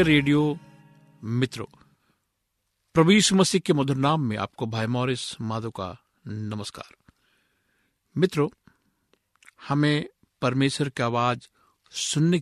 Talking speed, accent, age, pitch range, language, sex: 95 wpm, native, 60-79, 110-150 Hz, Hindi, male